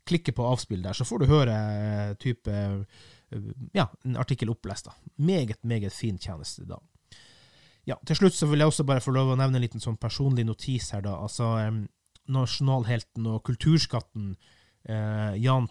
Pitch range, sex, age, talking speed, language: 110-145 Hz, male, 30-49, 155 wpm, English